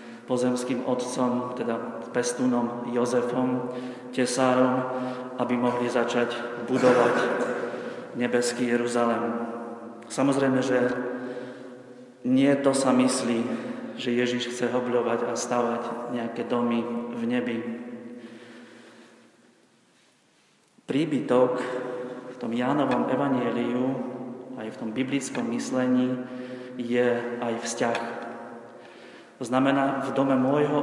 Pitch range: 120-125 Hz